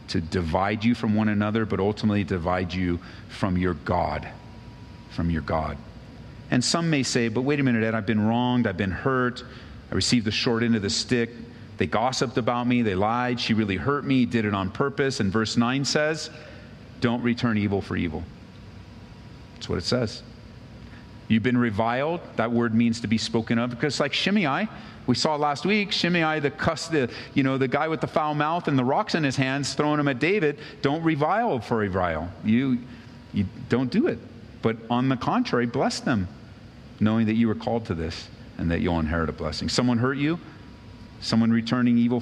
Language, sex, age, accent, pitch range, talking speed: English, male, 40-59, American, 105-125 Hz, 200 wpm